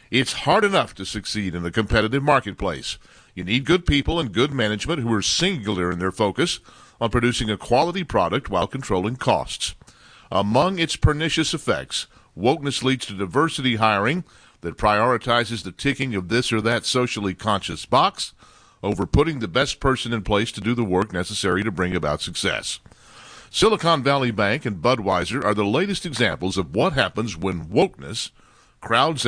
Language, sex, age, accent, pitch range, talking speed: English, male, 50-69, American, 95-130 Hz, 165 wpm